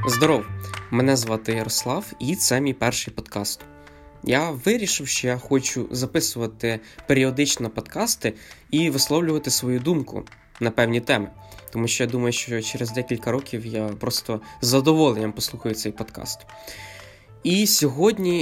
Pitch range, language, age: 110-140 Hz, Ukrainian, 20-39